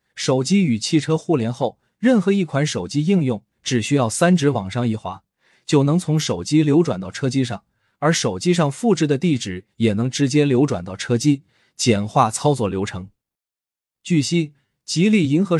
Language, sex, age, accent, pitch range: Chinese, male, 20-39, native, 115-155 Hz